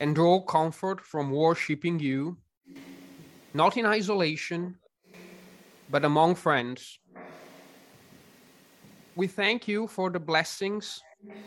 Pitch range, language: 165-210 Hz, English